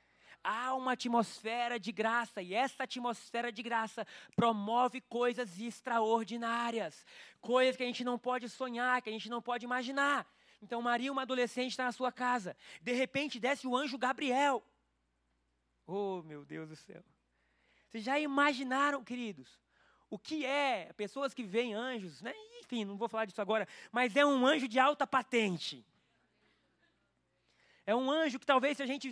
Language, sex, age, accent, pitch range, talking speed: Portuguese, male, 20-39, Brazilian, 230-265 Hz, 160 wpm